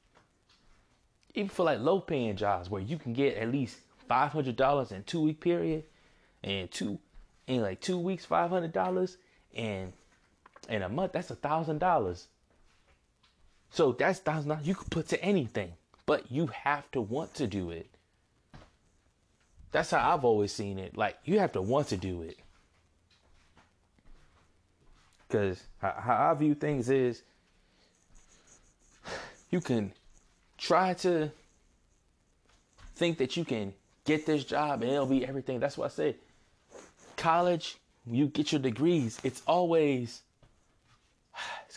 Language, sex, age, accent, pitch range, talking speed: English, male, 20-39, American, 95-155 Hz, 130 wpm